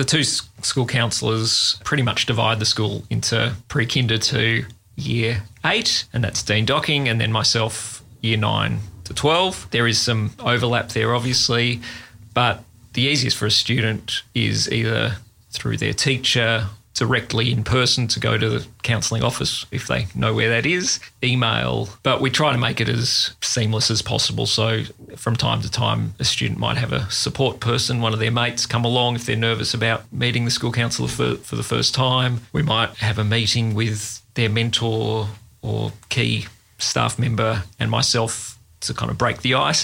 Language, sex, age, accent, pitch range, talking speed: English, male, 30-49, Australian, 110-125 Hz, 180 wpm